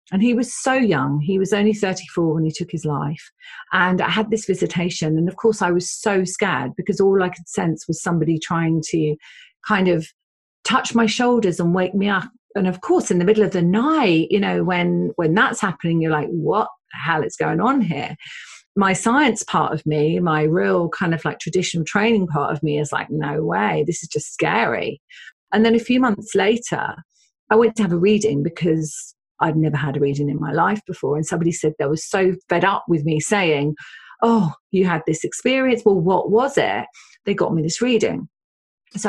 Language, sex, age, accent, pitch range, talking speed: English, female, 40-59, British, 160-205 Hz, 215 wpm